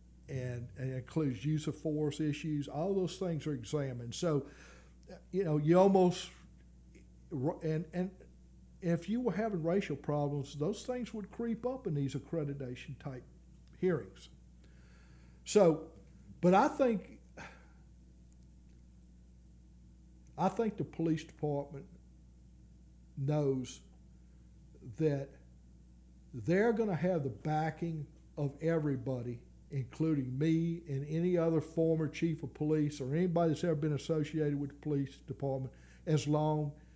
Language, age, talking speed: English, 60-79, 120 wpm